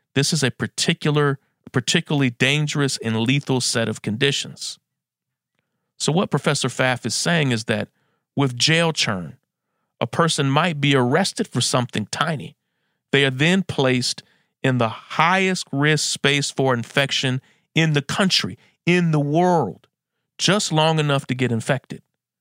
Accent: American